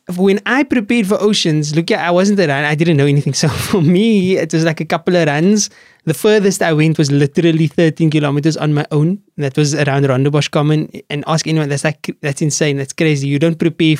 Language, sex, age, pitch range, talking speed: English, male, 20-39, 150-185 Hz, 225 wpm